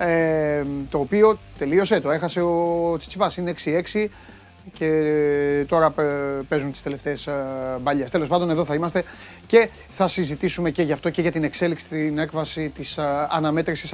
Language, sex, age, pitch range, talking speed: Greek, male, 30-49, 155-205 Hz, 145 wpm